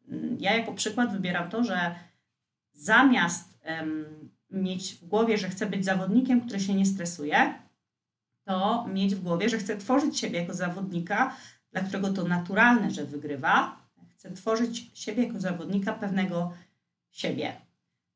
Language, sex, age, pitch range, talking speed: Polish, female, 30-49, 165-220 Hz, 135 wpm